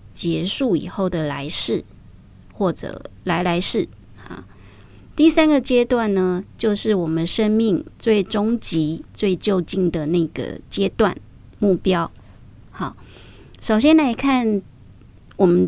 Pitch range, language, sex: 160-220 Hz, Chinese, female